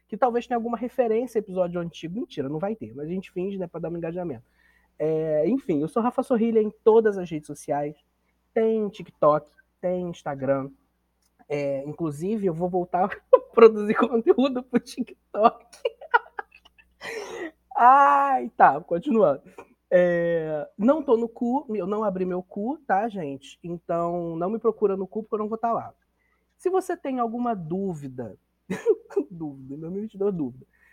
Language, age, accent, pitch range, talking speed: Portuguese, 20-39, Brazilian, 155-235 Hz, 160 wpm